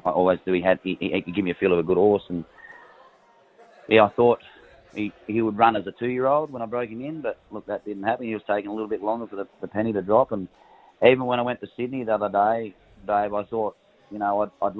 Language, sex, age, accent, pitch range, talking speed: English, male, 30-49, Australian, 95-115 Hz, 270 wpm